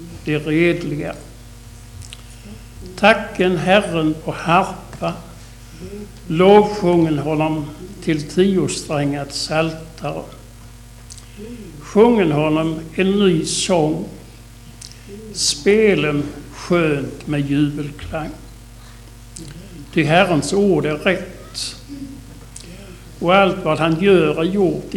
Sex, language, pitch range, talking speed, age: male, Swedish, 120-175 Hz, 80 wpm, 60-79